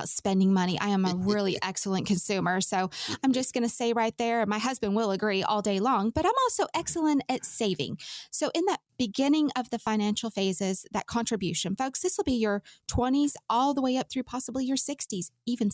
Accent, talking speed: American, 205 wpm